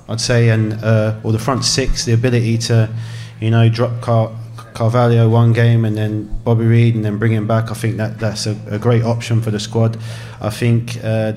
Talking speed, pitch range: 220 wpm, 115-125 Hz